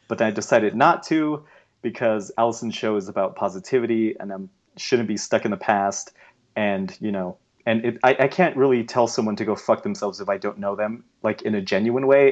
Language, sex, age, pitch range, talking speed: English, male, 30-49, 105-125 Hz, 210 wpm